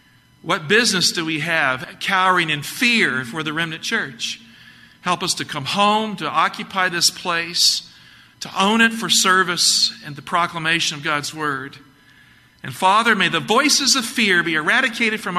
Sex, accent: male, American